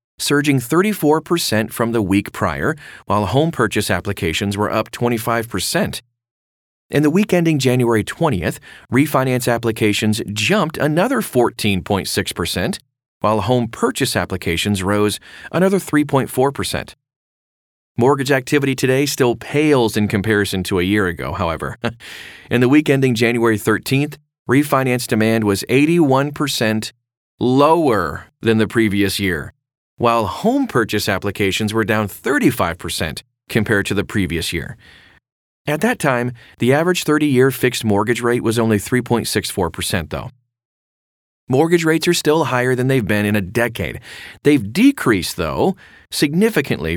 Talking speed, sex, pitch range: 125 wpm, male, 105-135 Hz